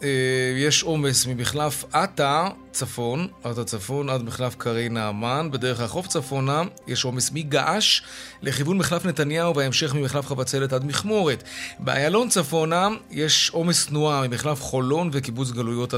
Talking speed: 130 wpm